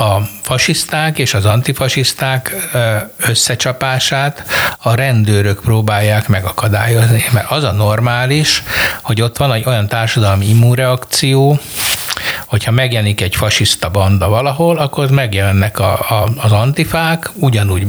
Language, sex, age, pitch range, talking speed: Hungarian, male, 60-79, 105-130 Hz, 105 wpm